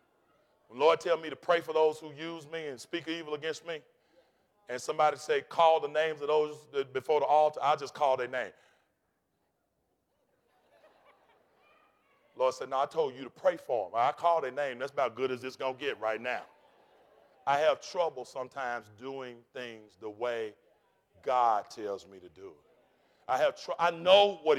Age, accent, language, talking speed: 40-59, American, English, 185 wpm